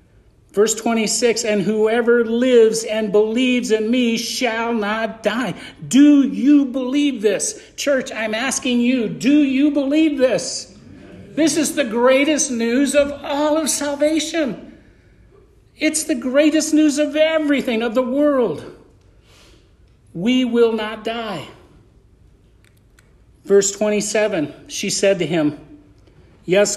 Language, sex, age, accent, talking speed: English, male, 50-69, American, 120 wpm